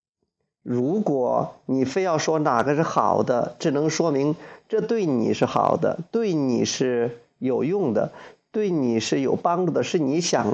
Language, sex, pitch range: Chinese, male, 130-175 Hz